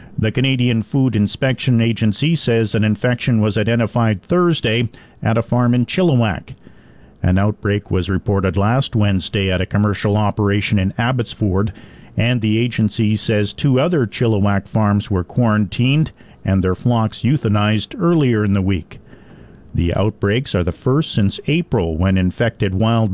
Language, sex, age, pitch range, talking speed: English, male, 50-69, 100-125 Hz, 145 wpm